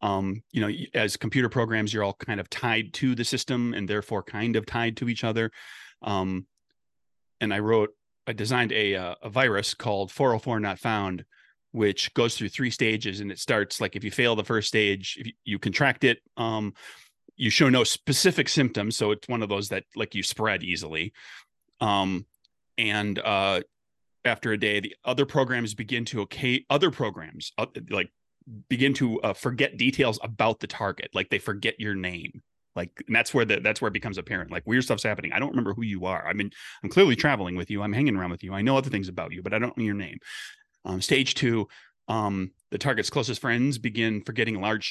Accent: American